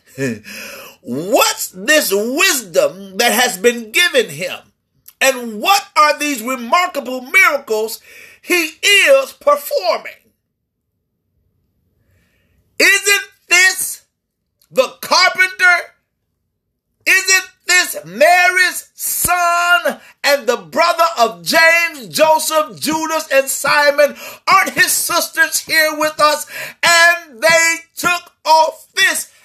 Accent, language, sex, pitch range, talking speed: American, English, male, 255-360 Hz, 90 wpm